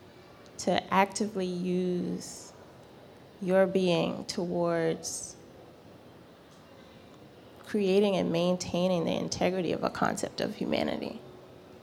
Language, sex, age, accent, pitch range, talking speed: English, female, 20-39, American, 175-205 Hz, 80 wpm